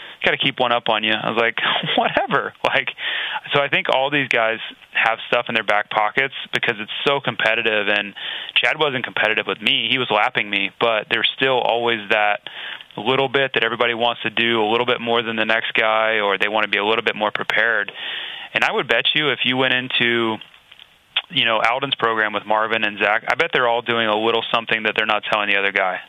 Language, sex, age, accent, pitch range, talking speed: English, male, 30-49, American, 105-125 Hz, 230 wpm